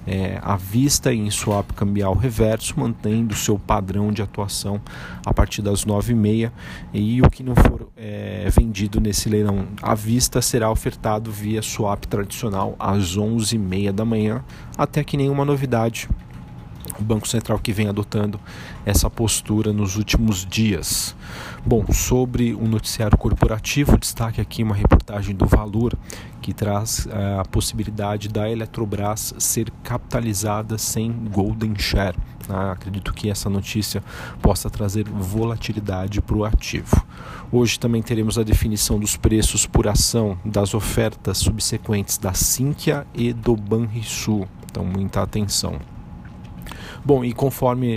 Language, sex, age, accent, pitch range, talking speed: Portuguese, male, 40-59, Brazilian, 100-115 Hz, 140 wpm